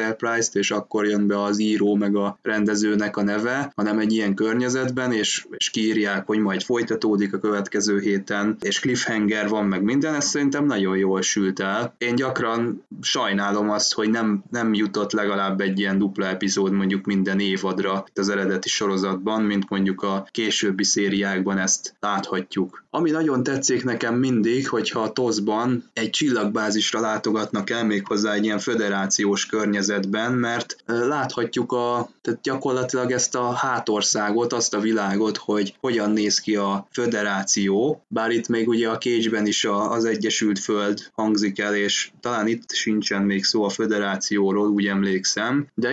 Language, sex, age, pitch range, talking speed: Hungarian, male, 20-39, 100-115 Hz, 155 wpm